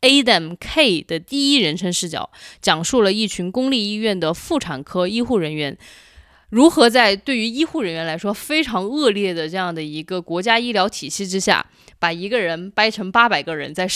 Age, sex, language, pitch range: 20-39, female, Chinese, 170-220 Hz